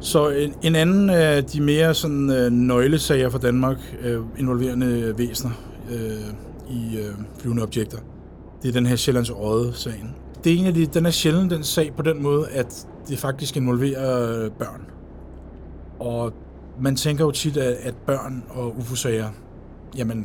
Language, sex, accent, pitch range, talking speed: Danish, male, native, 115-145 Hz, 150 wpm